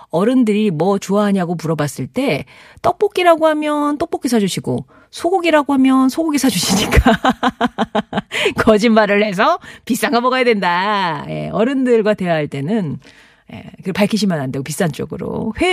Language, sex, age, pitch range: Korean, female, 40-59, 175-255 Hz